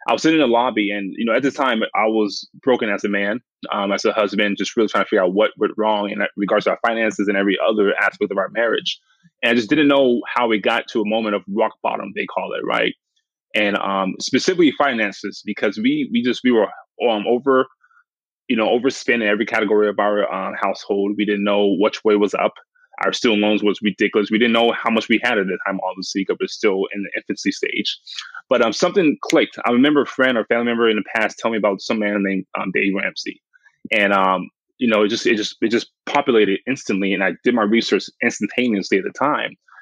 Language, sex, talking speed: English, male, 235 wpm